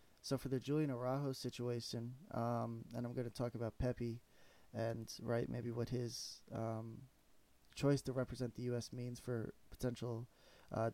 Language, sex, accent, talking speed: English, male, American, 160 wpm